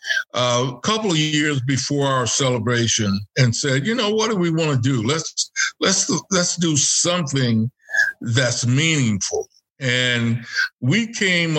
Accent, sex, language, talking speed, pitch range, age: American, male, English, 145 wpm, 125-160 Hz, 60-79